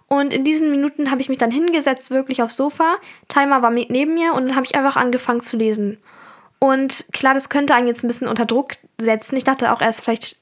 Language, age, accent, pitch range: German, 10-29, German, 235-280 Hz